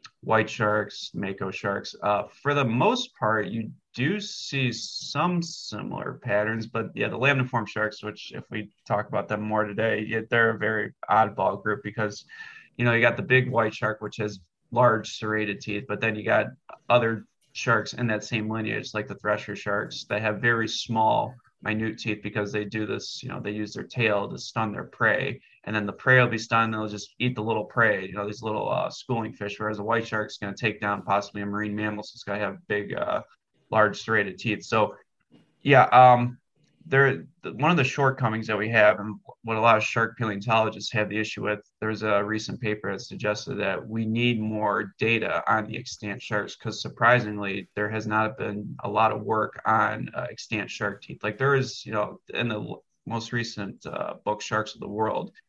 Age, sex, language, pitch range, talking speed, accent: 20-39, male, English, 105-120 Hz, 210 wpm, American